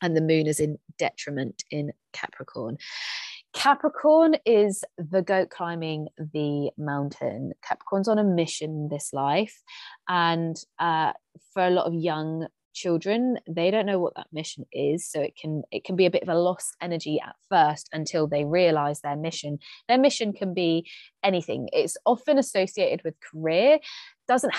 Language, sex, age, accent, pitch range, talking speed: English, female, 20-39, British, 160-210 Hz, 160 wpm